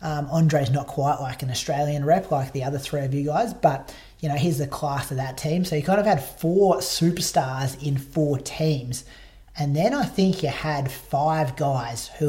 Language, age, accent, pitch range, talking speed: English, 30-49, Australian, 140-155 Hz, 210 wpm